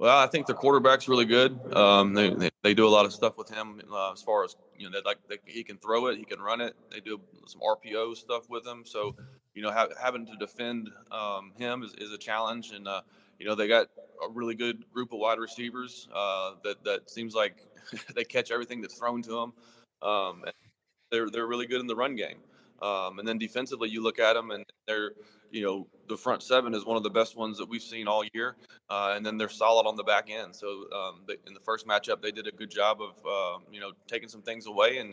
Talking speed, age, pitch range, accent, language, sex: 250 wpm, 20-39, 105-120 Hz, American, English, male